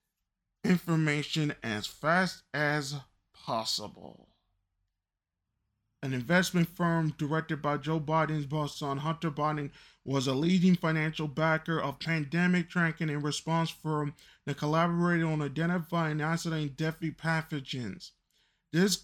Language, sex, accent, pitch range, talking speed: English, male, American, 160-195 Hz, 110 wpm